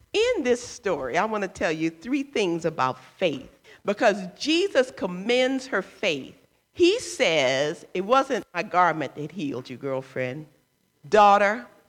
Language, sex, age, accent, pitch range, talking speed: English, female, 50-69, American, 170-270 Hz, 140 wpm